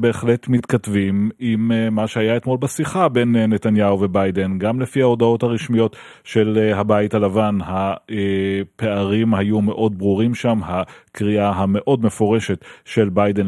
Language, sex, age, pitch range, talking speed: Hebrew, male, 30-49, 100-110 Hz, 120 wpm